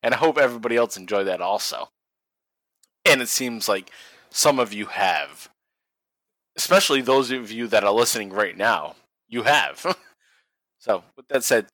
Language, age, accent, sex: English, 30-49, American, male